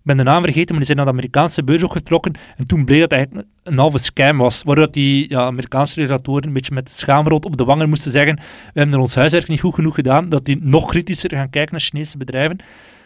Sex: male